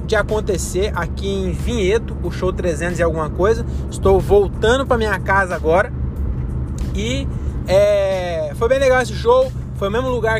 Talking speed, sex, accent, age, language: 160 wpm, male, Brazilian, 20-39, Portuguese